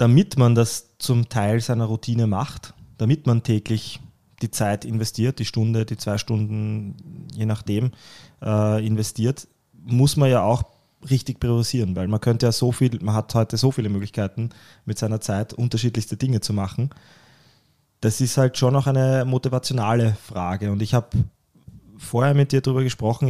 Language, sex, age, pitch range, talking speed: German, male, 20-39, 110-130 Hz, 165 wpm